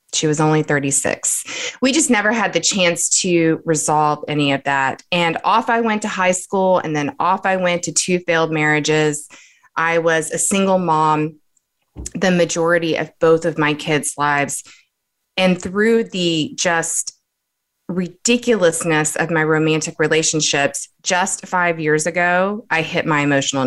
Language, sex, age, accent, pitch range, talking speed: English, female, 20-39, American, 150-185 Hz, 155 wpm